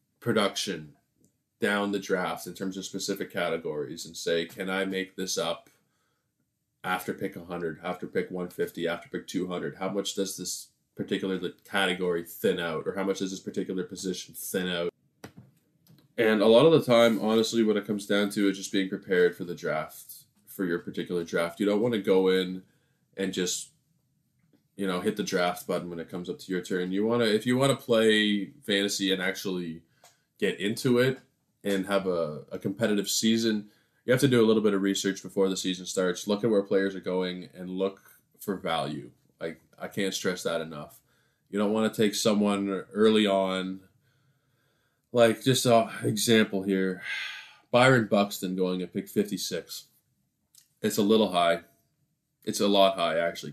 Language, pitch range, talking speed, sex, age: English, 90-110 Hz, 185 wpm, male, 20-39